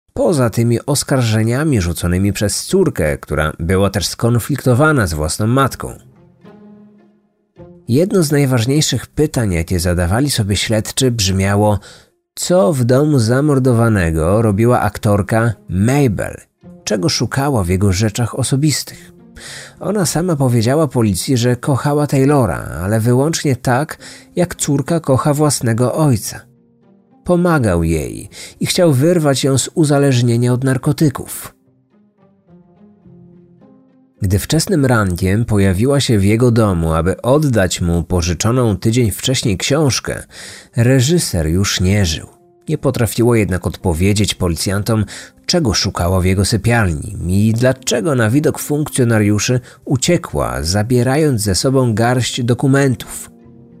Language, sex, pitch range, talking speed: Polish, male, 100-145 Hz, 110 wpm